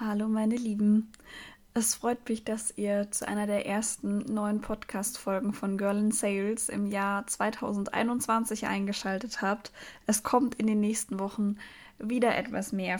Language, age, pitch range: German, 20-39, 205-240 Hz